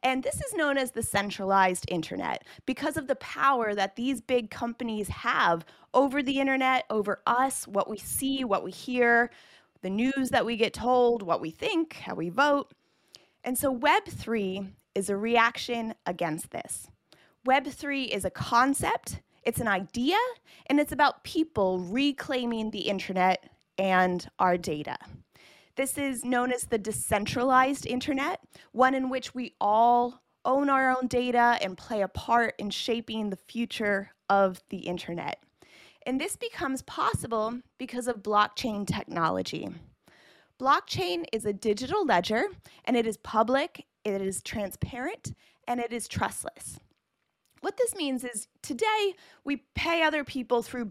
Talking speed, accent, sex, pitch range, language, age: 150 wpm, American, female, 205-270 Hz, English, 20-39